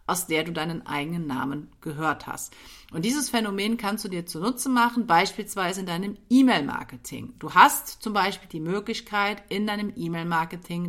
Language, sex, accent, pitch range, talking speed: German, female, German, 170-210 Hz, 160 wpm